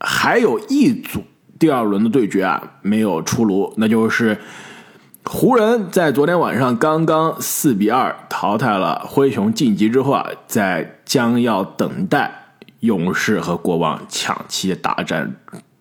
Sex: male